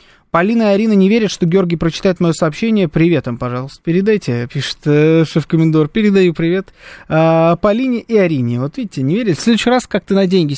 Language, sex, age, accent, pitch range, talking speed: Russian, male, 20-39, native, 150-190 Hz, 180 wpm